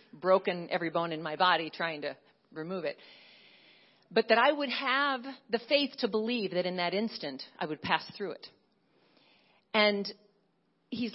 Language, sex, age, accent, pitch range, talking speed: English, female, 40-59, American, 205-265 Hz, 160 wpm